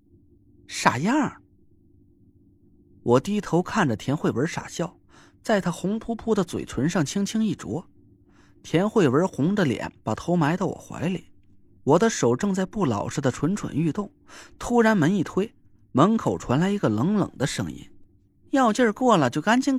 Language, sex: Chinese, male